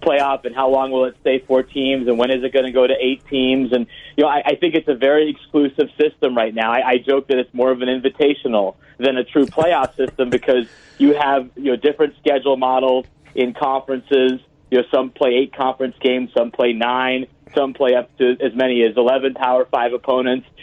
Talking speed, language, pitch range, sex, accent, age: 225 wpm, English, 125-150 Hz, male, American, 30-49